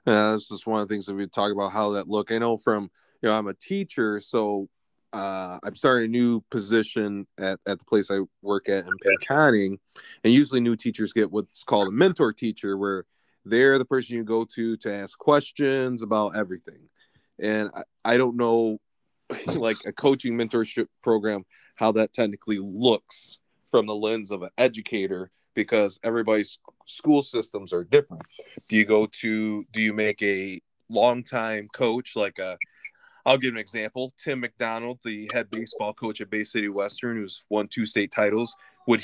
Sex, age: male, 20-39